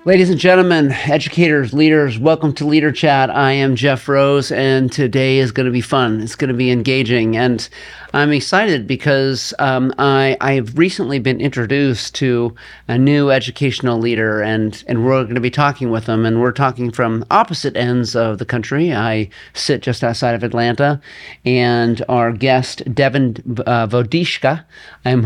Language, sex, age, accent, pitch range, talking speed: English, male, 40-59, American, 120-145 Hz, 170 wpm